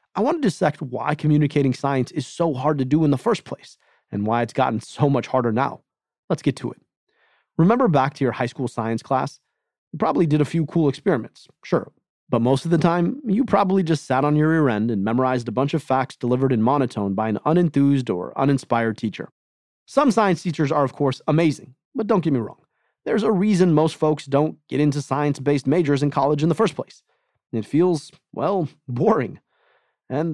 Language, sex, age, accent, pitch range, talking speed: English, male, 30-49, American, 130-170 Hz, 210 wpm